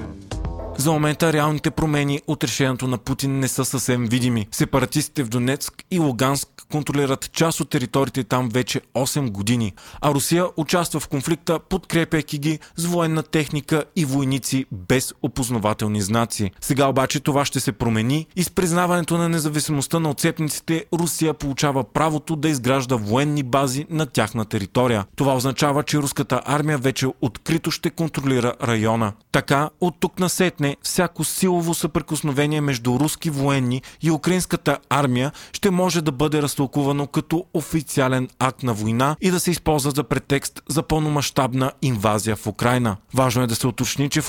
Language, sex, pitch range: Bulgarian, male, 125-155 Hz